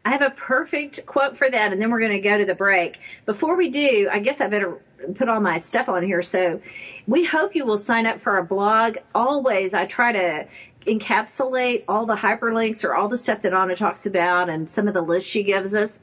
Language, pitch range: English, 195-260 Hz